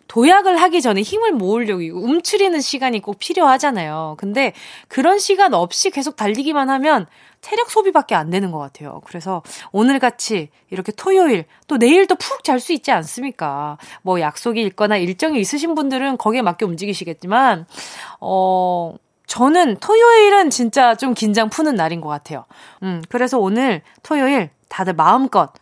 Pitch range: 205-330 Hz